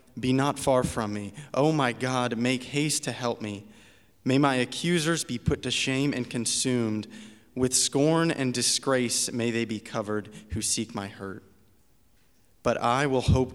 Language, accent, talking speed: English, American, 170 wpm